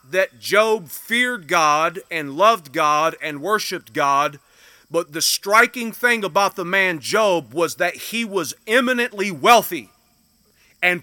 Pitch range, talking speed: 160-215 Hz, 135 wpm